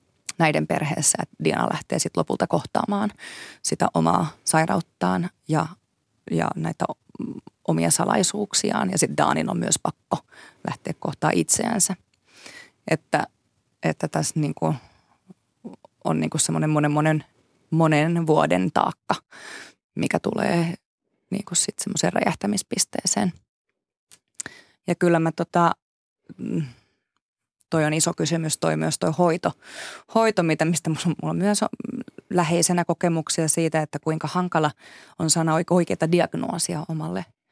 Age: 20-39